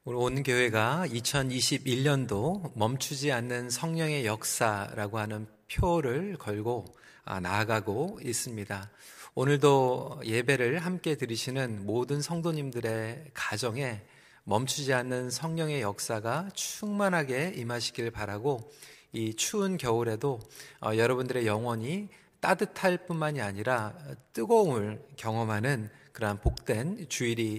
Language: Korean